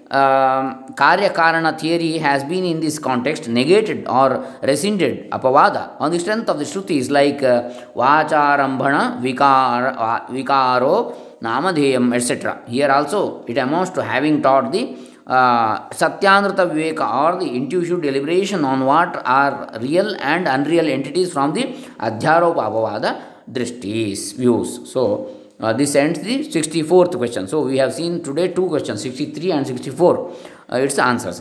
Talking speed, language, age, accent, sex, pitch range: 145 wpm, Kannada, 20-39, native, male, 110-160 Hz